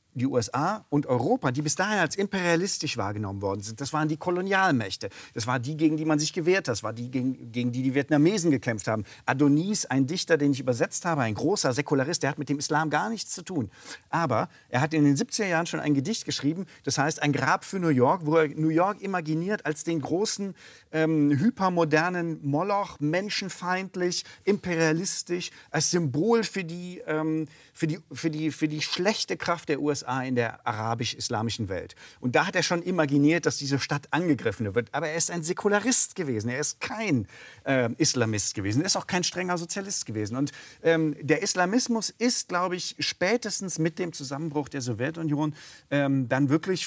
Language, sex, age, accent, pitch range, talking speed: German, male, 40-59, German, 140-180 Hz, 190 wpm